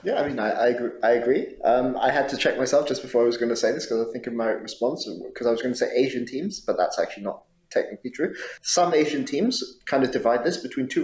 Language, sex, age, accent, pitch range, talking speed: English, male, 30-49, British, 110-120 Hz, 275 wpm